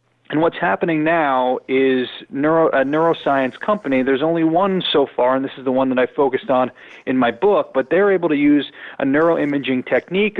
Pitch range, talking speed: 125-155 Hz, 195 wpm